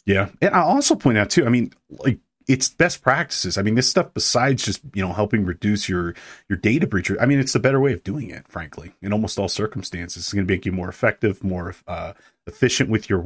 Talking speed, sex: 240 wpm, male